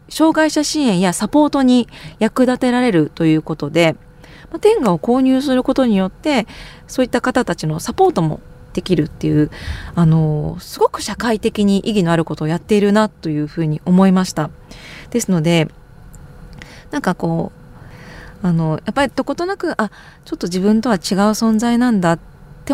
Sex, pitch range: female, 165-240 Hz